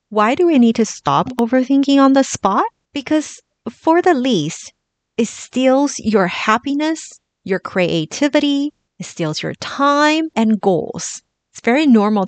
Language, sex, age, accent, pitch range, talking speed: English, female, 30-49, American, 180-245 Hz, 140 wpm